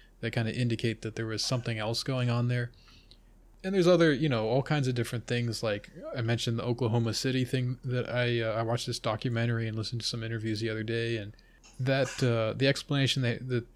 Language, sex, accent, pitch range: English, male, American, 110-130 Hz